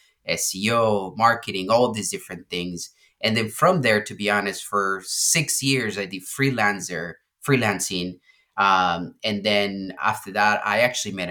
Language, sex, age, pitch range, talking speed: English, male, 30-49, 95-125 Hz, 150 wpm